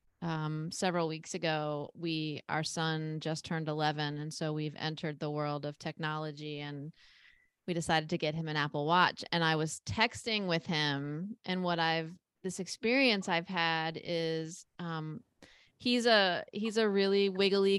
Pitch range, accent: 160-200 Hz, American